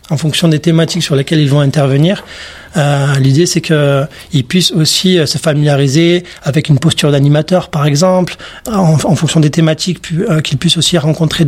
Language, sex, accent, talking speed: French, male, French, 180 wpm